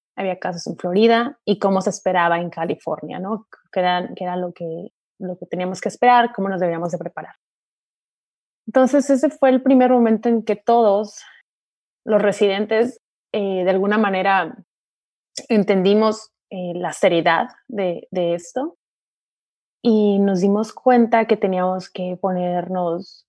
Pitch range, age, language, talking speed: 180-220 Hz, 20-39, Spanish, 140 wpm